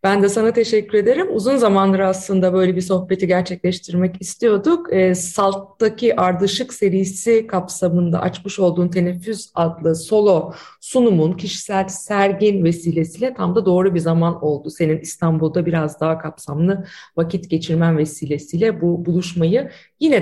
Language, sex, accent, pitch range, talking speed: Turkish, female, native, 170-225 Hz, 130 wpm